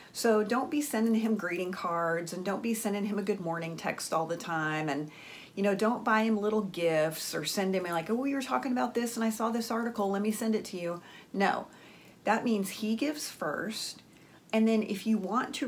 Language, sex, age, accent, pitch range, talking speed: English, female, 40-59, American, 180-230 Hz, 230 wpm